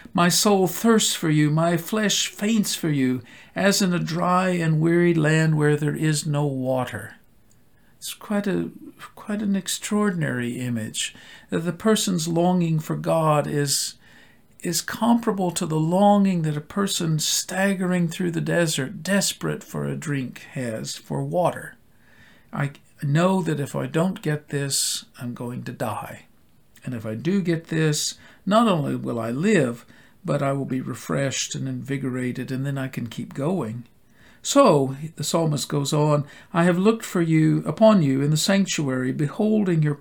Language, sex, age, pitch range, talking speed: English, male, 50-69, 135-180 Hz, 160 wpm